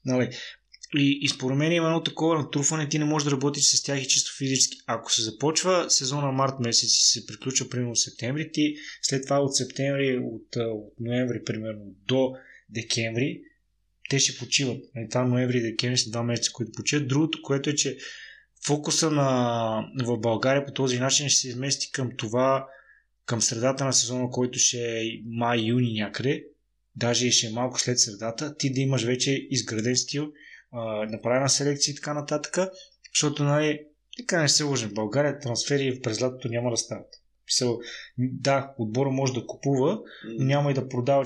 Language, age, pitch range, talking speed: Bulgarian, 20-39, 120-140 Hz, 175 wpm